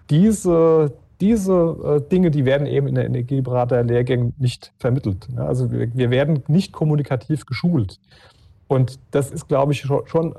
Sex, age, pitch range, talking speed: male, 40-59, 120-140 Hz, 135 wpm